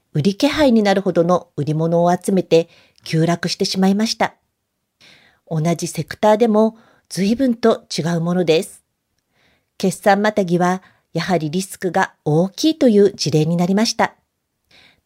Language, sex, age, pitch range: Japanese, female, 40-59, 175-225 Hz